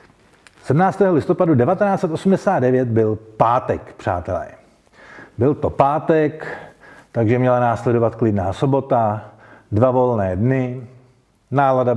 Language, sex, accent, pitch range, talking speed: Czech, male, native, 115-145 Hz, 90 wpm